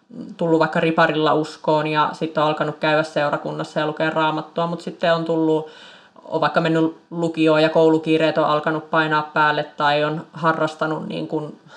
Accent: native